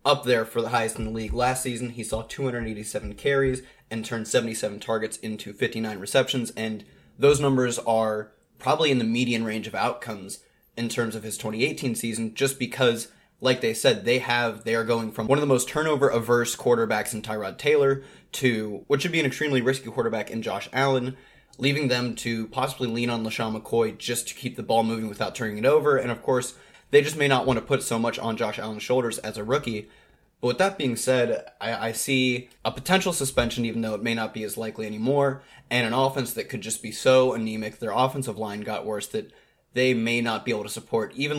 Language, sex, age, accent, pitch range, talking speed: English, male, 20-39, American, 110-130 Hz, 215 wpm